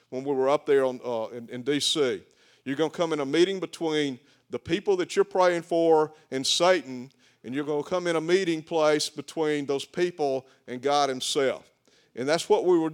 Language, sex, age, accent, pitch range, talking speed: English, male, 40-59, American, 130-160 Hz, 210 wpm